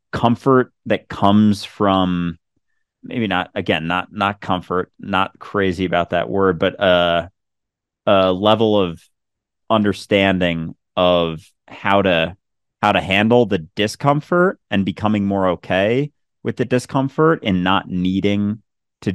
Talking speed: 125 wpm